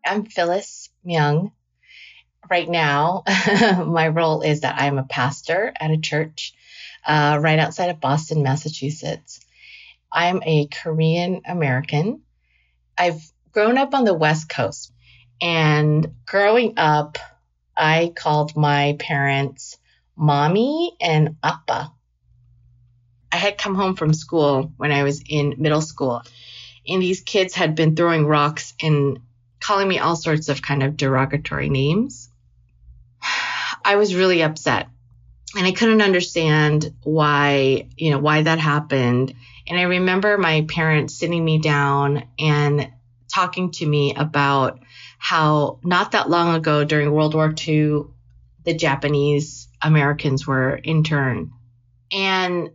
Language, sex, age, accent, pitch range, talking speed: English, female, 30-49, American, 135-165 Hz, 130 wpm